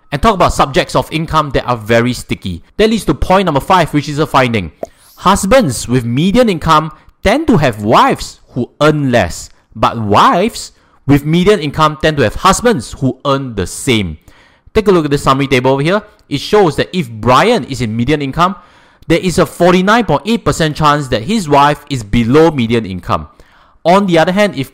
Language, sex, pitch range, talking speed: English, male, 130-185 Hz, 190 wpm